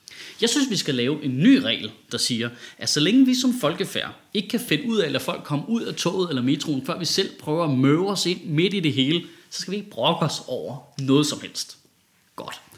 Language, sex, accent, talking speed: Danish, male, native, 245 wpm